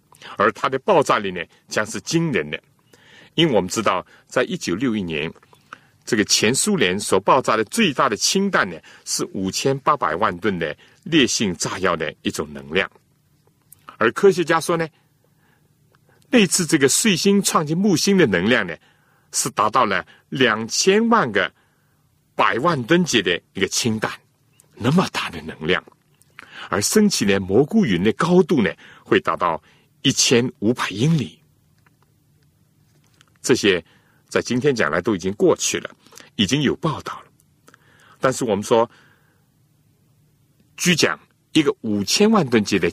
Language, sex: Chinese, male